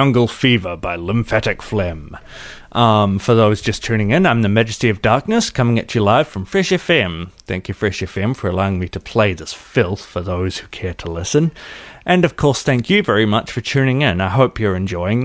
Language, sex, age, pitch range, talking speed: English, male, 30-49, 95-120 Hz, 215 wpm